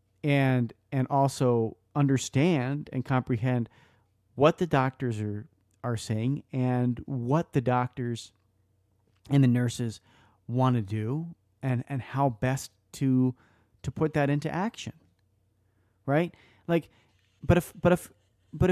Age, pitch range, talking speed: 30-49, 110-145 Hz, 125 wpm